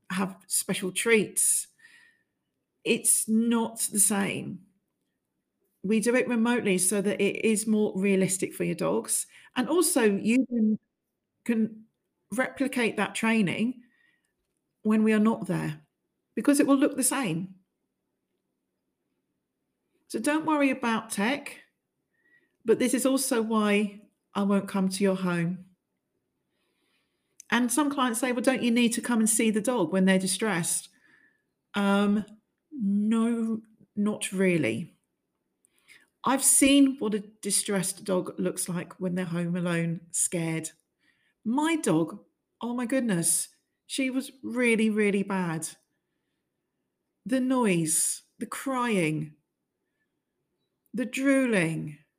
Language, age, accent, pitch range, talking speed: English, 40-59, British, 185-245 Hz, 120 wpm